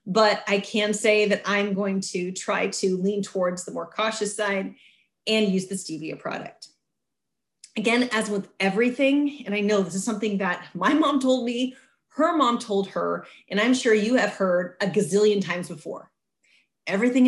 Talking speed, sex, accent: 175 wpm, female, American